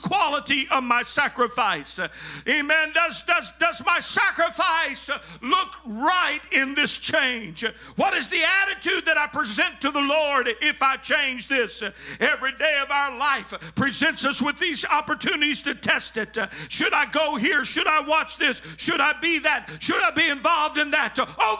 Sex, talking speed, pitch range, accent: male, 165 wpm, 195-295 Hz, American